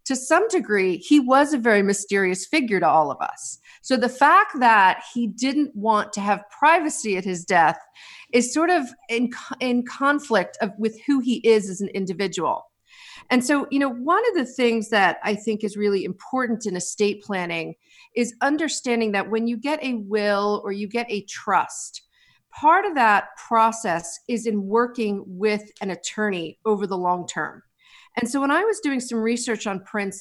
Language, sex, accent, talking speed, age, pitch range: English, female, American, 185 wpm, 40-59, 205-255 Hz